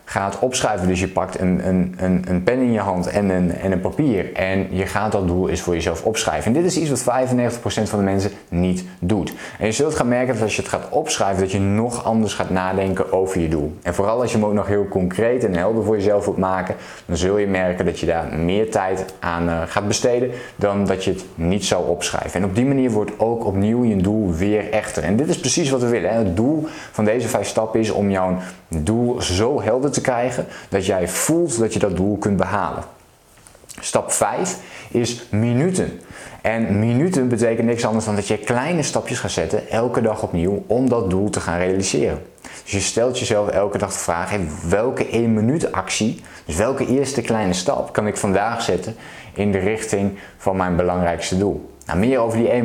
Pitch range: 90-110 Hz